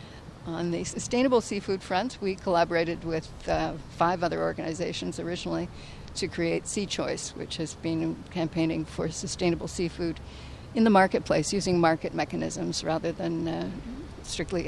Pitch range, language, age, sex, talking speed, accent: 165-190 Hz, English, 60-79, female, 140 wpm, American